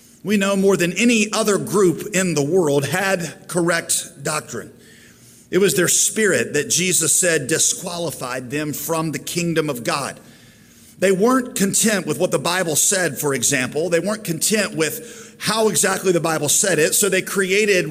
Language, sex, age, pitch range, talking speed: English, male, 40-59, 145-185 Hz, 170 wpm